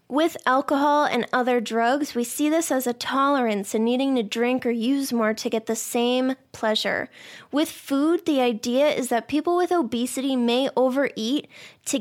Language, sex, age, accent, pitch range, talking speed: English, female, 20-39, American, 230-275 Hz, 175 wpm